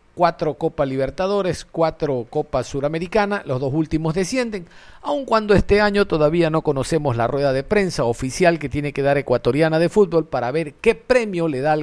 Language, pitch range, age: Spanish, 135-185 Hz, 50-69